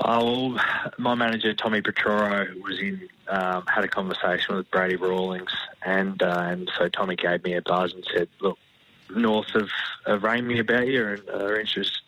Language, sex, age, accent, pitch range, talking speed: English, male, 20-39, Australian, 95-115 Hz, 185 wpm